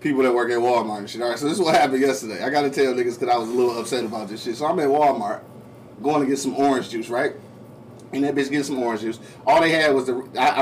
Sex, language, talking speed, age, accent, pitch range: male, English, 295 wpm, 30-49, American, 130-185 Hz